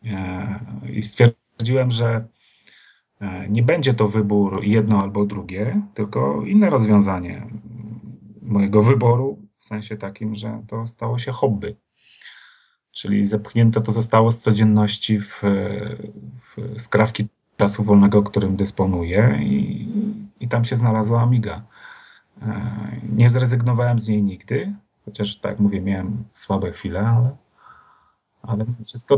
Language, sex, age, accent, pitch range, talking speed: Polish, male, 30-49, native, 105-120 Hz, 115 wpm